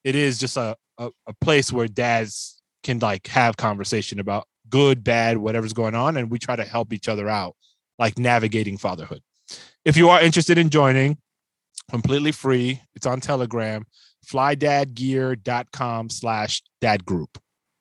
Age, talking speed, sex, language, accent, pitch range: 30-49, 150 wpm, male, English, American, 110-140 Hz